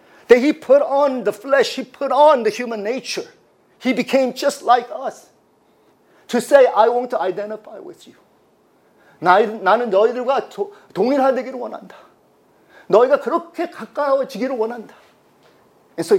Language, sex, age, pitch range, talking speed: English, male, 40-59, 155-245 Hz, 95 wpm